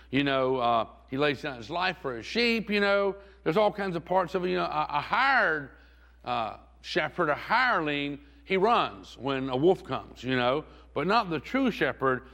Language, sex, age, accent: English, male, 50-69, American